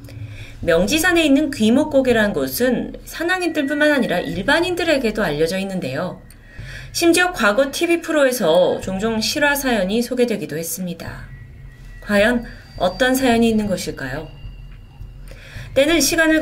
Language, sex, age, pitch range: Korean, female, 30-49, 180-280 Hz